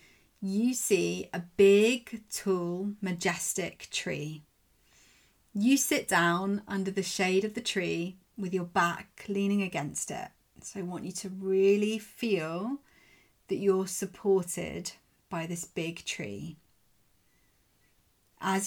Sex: female